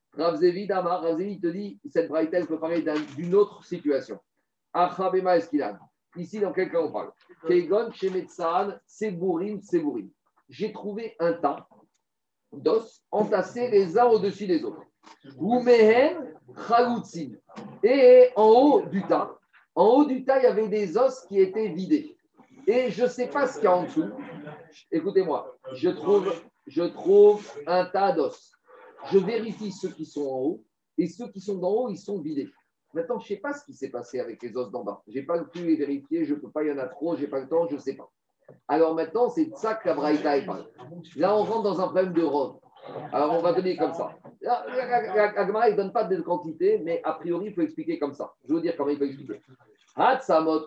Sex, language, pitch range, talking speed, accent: male, French, 170-255 Hz, 195 wpm, French